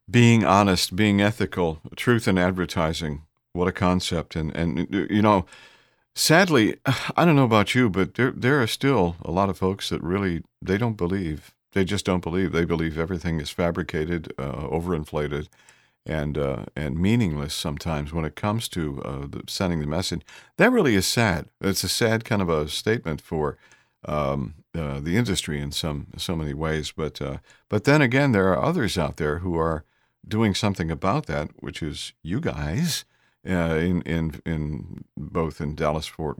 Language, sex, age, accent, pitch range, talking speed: English, male, 50-69, American, 75-95 Hz, 175 wpm